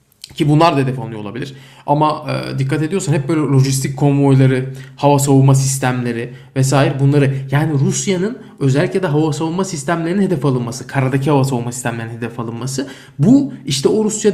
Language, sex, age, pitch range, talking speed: Turkish, male, 20-39, 125-150 Hz, 160 wpm